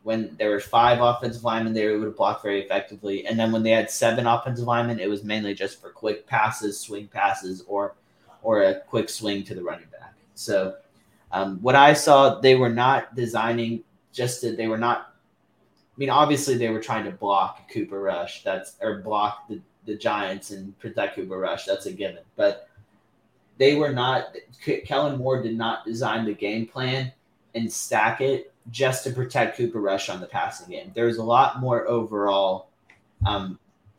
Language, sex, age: English, male, 20-39